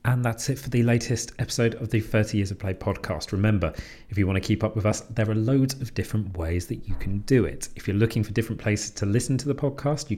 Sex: male